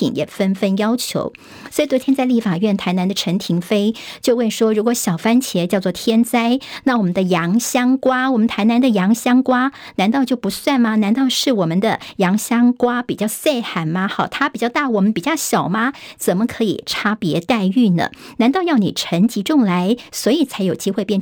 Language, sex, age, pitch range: Chinese, male, 50-69, 195-250 Hz